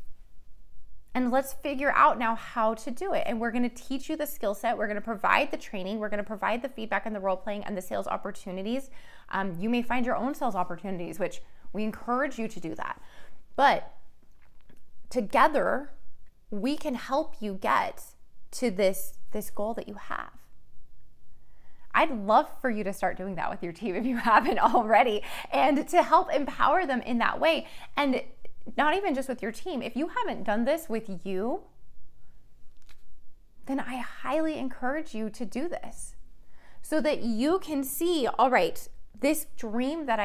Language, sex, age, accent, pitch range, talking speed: English, female, 20-39, American, 205-275 Hz, 180 wpm